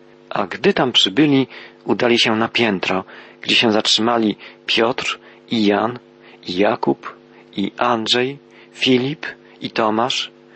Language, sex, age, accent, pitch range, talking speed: Polish, male, 40-59, native, 100-125 Hz, 120 wpm